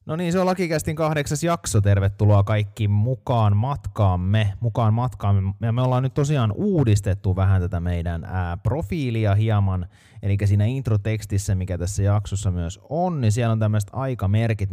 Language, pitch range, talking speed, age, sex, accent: Finnish, 95-115 Hz, 150 wpm, 30-49, male, native